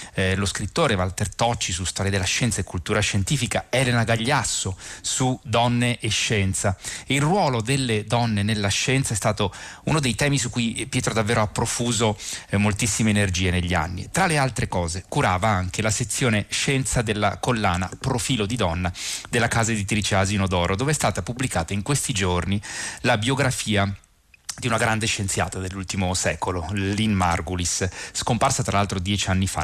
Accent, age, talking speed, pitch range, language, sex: native, 30-49, 165 wpm, 100-125 Hz, Italian, male